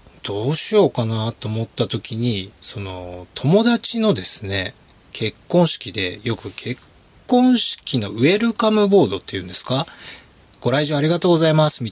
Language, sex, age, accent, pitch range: Japanese, male, 20-39, native, 100-145 Hz